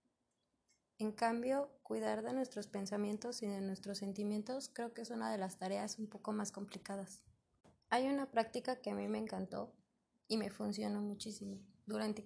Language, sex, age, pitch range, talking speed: Spanish, female, 20-39, 195-235 Hz, 165 wpm